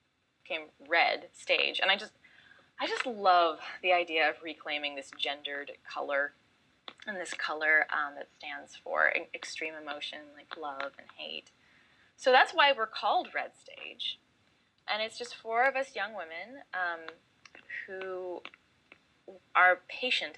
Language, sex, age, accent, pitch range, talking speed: English, female, 10-29, American, 150-215 Hz, 140 wpm